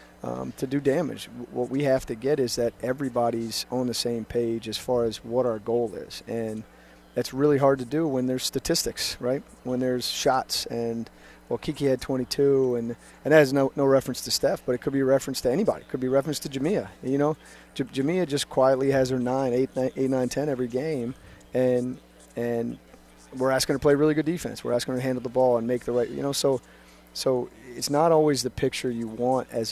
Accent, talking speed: American, 230 wpm